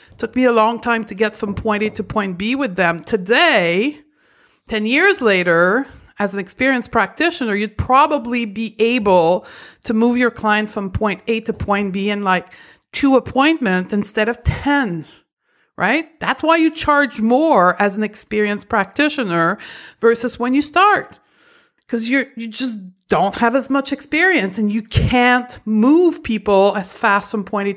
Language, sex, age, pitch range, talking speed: English, female, 50-69, 195-250 Hz, 165 wpm